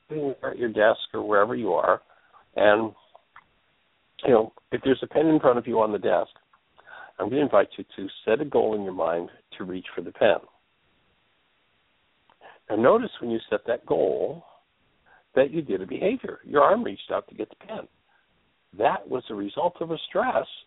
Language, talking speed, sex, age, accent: English, 190 wpm, male, 60-79, American